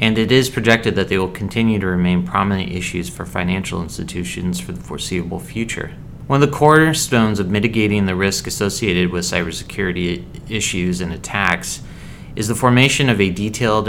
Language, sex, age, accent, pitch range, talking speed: English, male, 30-49, American, 90-110 Hz, 170 wpm